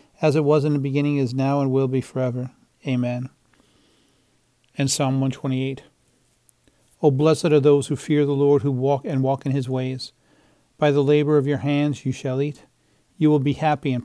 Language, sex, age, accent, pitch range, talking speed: English, male, 40-59, American, 130-150 Hz, 185 wpm